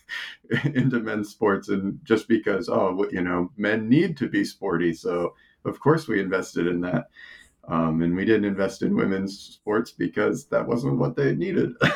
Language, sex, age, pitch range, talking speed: English, male, 40-59, 90-120 Hz, 175 wpm